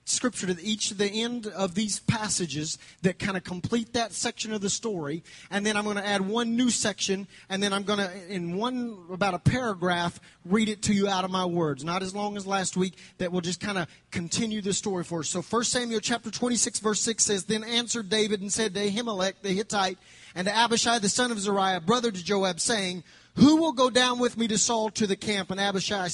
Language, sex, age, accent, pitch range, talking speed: English, male, 30-49, American, 190-230 Hz, 235 wpm